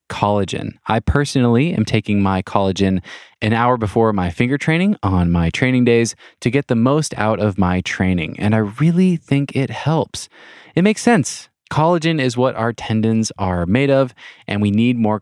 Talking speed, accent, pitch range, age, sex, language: 180 wpm, American, 95-140 Hz, 20-39, male, English